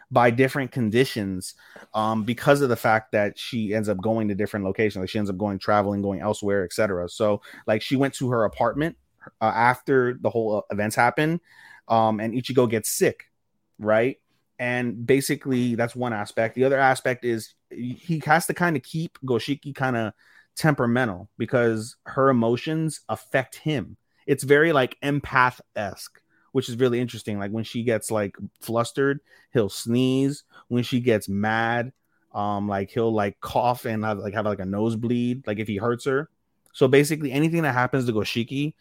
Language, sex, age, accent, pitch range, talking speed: English, male, 30-49, American, 105-130 Hz, 175 wpm